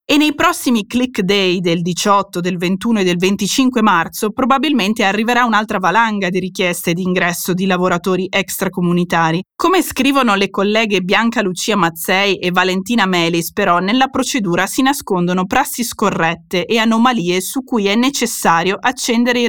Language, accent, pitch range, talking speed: Italian, native, 185-245 Hz, 150 wpm